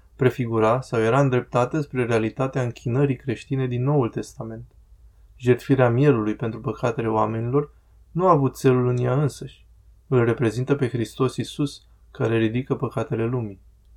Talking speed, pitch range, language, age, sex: 140 wpm, 115-140 Hz, Romanian, 20-39, male